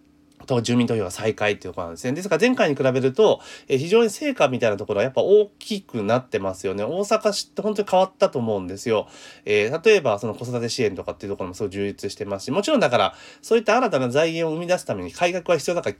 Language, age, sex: Japanese, 30-49, male